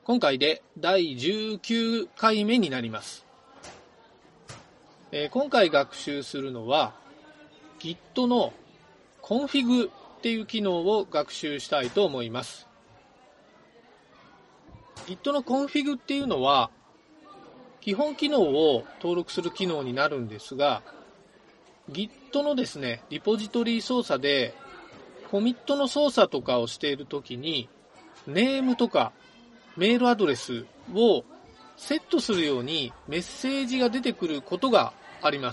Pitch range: 145-240 Hz